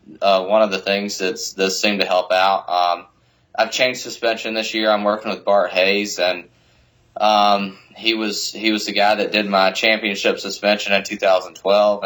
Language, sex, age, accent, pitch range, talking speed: English, male, 20-39, American, 90-105 Hz, 190 wpm